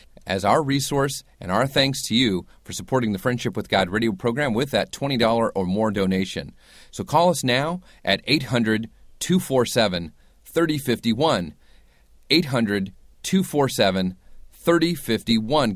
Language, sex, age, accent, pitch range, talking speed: English, male, 30-49, American, 100-140 Hz, 110 wpm